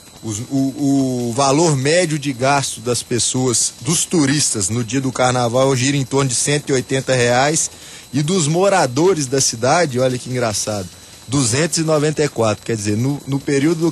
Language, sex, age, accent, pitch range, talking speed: Portuguese, male, 20-39, Brazilian, 125-155 Hz, 150 wpm